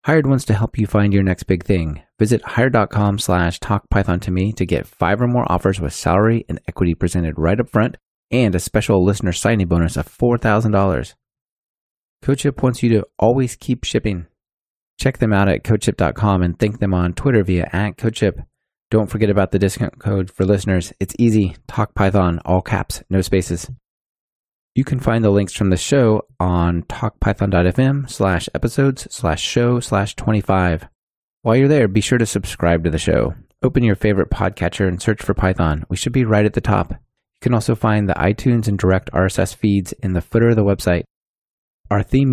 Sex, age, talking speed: male, 30-49, 190 wpm